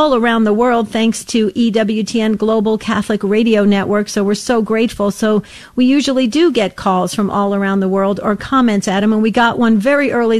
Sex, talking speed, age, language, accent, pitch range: female, 200 wpm, 50-69, English, American, 210-245 Hz